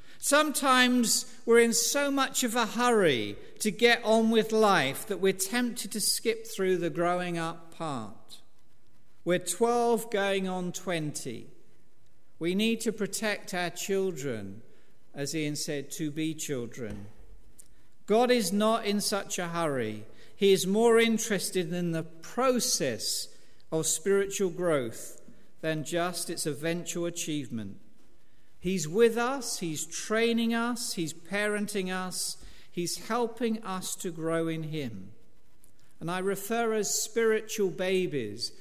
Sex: male